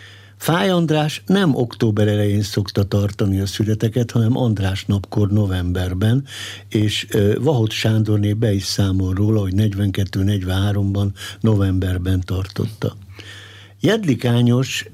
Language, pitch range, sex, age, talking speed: Hungarian, 100-110 Hz, male, 60-79, 100 wpm